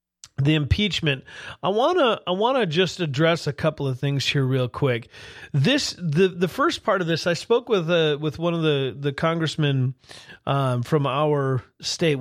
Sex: male